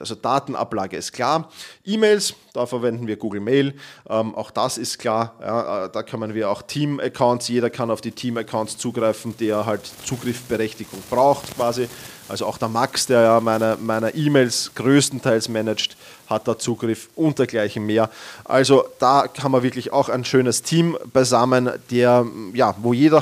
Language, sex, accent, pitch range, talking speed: German, male, German, 110-130 Hz, 155 wpm